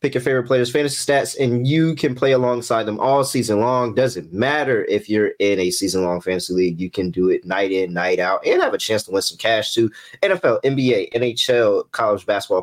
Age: 20-39